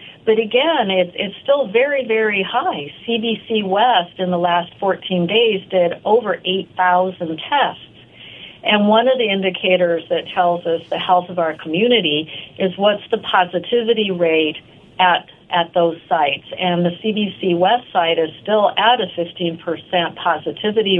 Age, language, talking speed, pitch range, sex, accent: 50-69, English, 150 wpm, 170-210 Hz, female, American